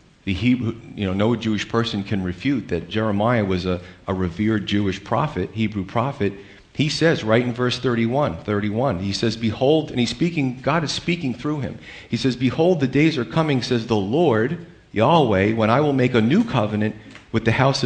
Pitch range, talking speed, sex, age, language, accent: 100-130 Hz, 195 wpm, male, 40-59, English, American